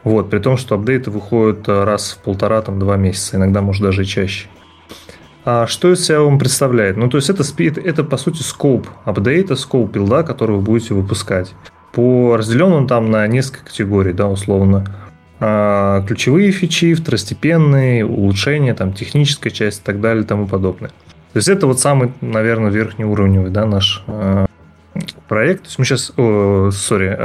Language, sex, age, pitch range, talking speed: Russian, male, 20-39, 100-135 Hz, 170 wpm